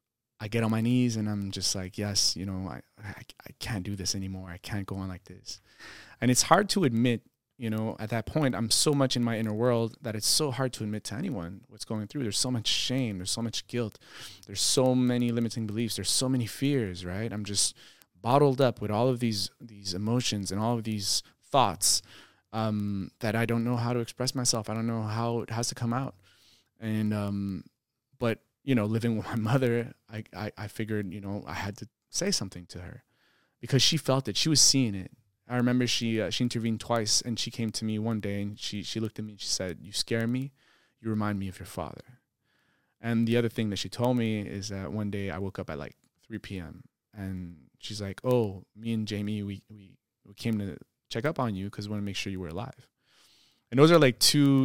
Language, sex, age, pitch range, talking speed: English, male, 20-39, 100-120 Hz, 235 wpm